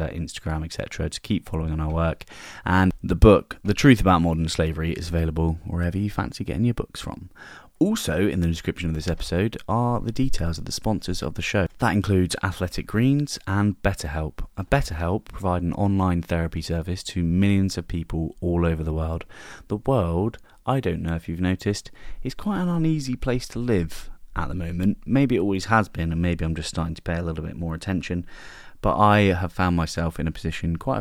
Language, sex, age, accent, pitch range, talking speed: English, male, 20-39, British, 80-100 Hz, 205 wpm